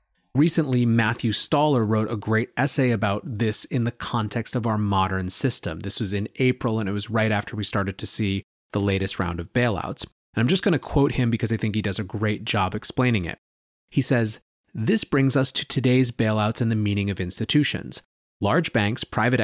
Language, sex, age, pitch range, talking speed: English, male, 30-49, 105-130 Hz, 205 wpm